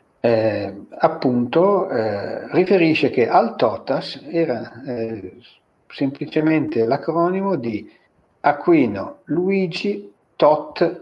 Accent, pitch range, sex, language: native, 110-140 Hz, male, Italian